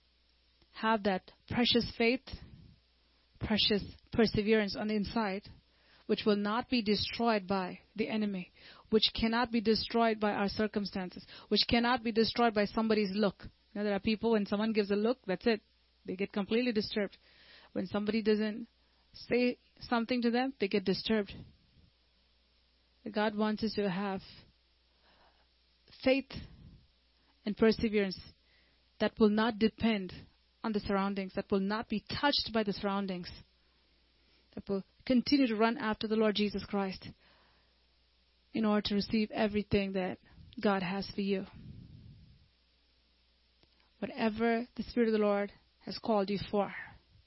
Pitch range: 185-225 Hz